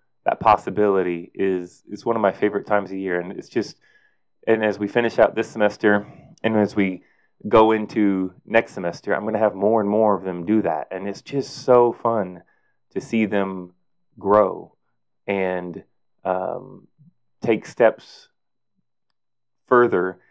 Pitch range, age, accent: 95-115 Hz, 20-39, American